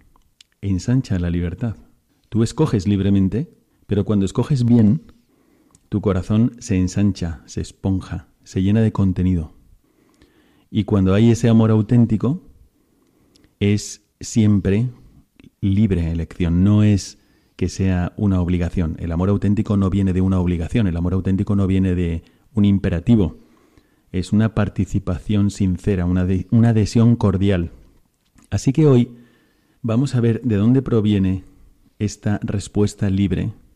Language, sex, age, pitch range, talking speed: Spanish, male, 40-59, 95-115 Hz, 125 wpm